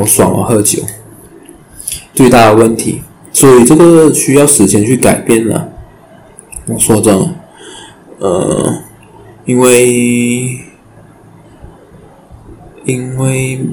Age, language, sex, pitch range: 20-39, Chinese, male, 105-125 Hz